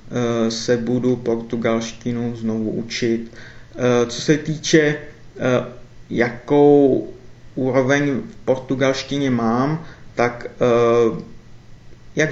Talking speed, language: 75 wpm, Czech